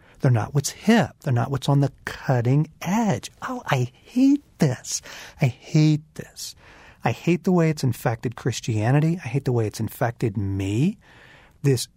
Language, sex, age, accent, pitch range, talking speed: English, male, 40-59, American, 115-150 Hz, 165 wpm